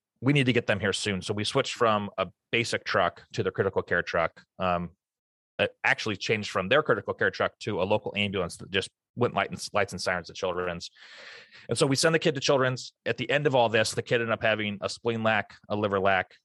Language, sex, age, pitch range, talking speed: English, male, 30-49, 100-130 Hz, 240 wpm